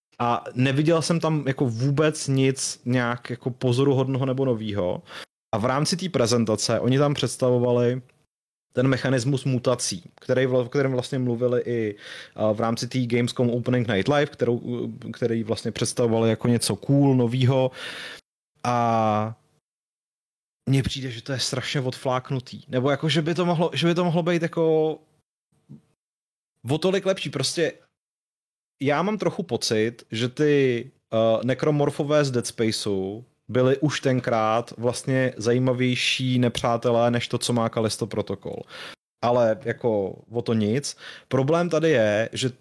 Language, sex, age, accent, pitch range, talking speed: Czech, male, 30-49, native, 115-140 Hz, 135 wpm